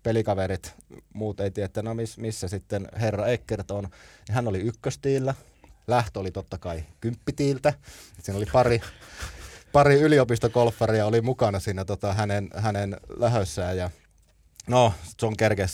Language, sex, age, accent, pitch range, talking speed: Finnish, male, 30-49, native, 95-130 Hz, 135 wpm